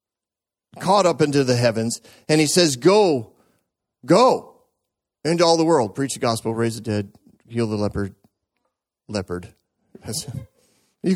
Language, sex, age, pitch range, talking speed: English, male, 40-59, 180-275 Hz, 135 wpm